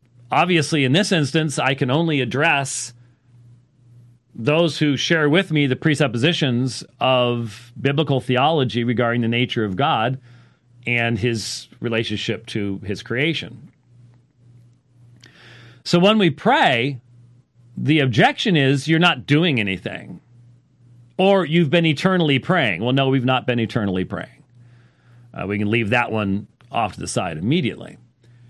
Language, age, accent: English, 40-59, American